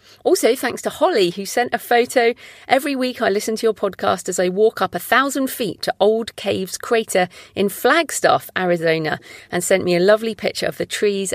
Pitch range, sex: 180-235 Hz, female